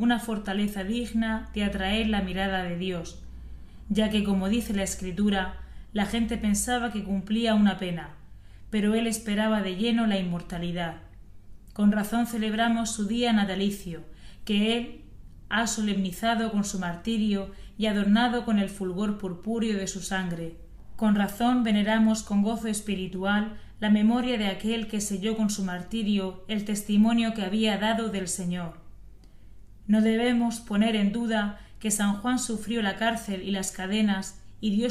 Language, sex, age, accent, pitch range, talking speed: Spanish, female, 20-39, Spanish, 190-220 Hz, 155 wpm